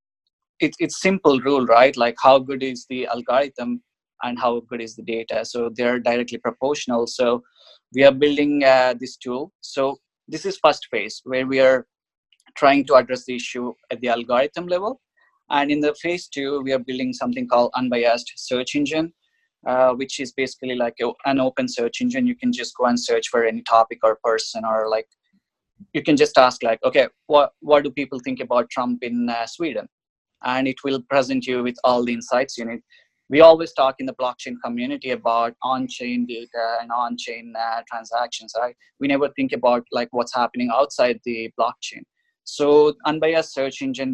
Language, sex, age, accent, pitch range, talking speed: English, male, 20-39, Indian, 120-145 Hz, 180 wpm